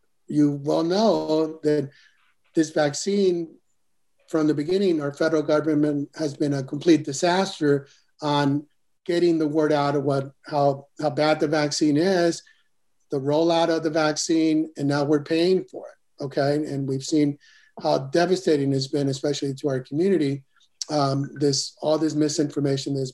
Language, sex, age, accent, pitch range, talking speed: English, male, 50-69, American, 145-165 Hz, 155 wpm